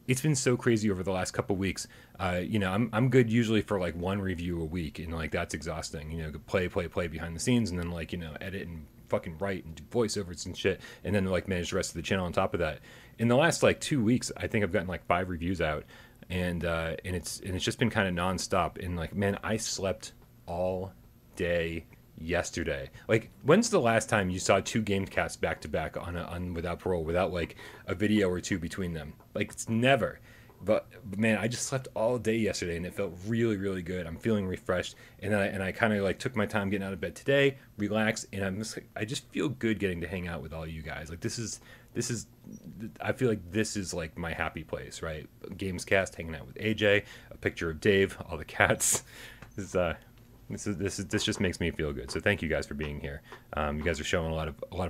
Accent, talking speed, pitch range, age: American, 250 wpm, 85-110 Hz, 30-49